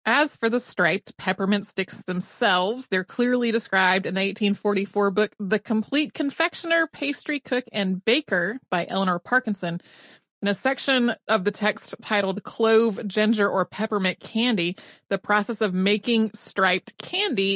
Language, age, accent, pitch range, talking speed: English, 30-49, American, 190-245 Hz, 145 wpm